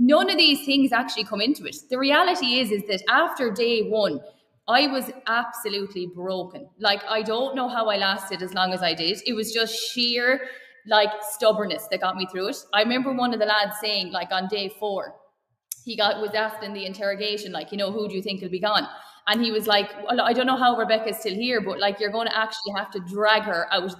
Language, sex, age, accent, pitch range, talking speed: English, female, 20-39, Irish, 200-240 Hz, 240 wpm